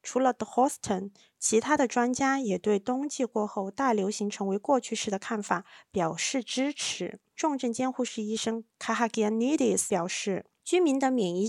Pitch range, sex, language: 195-255 Hz, female, Chinese